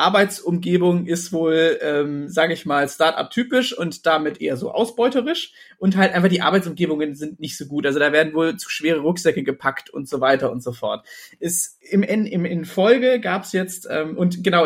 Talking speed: 190 wpm